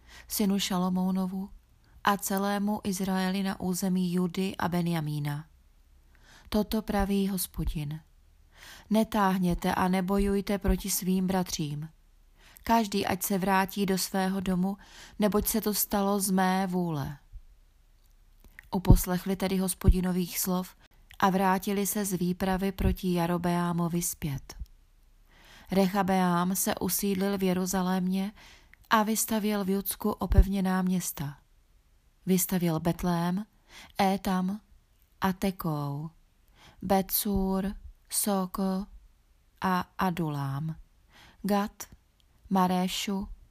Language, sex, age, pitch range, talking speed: Czech, female, 30-49, 175-200 Hz, 90 wpm